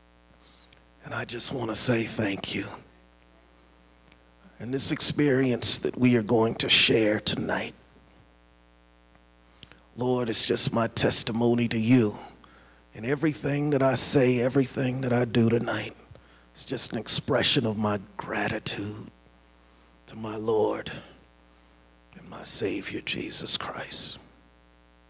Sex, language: male, English